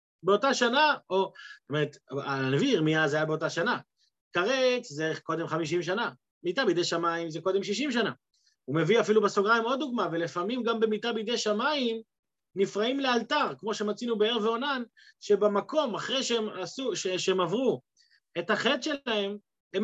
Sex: male